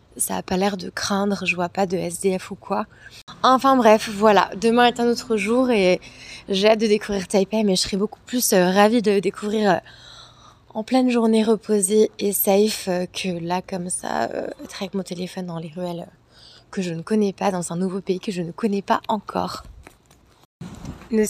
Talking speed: 195 wpm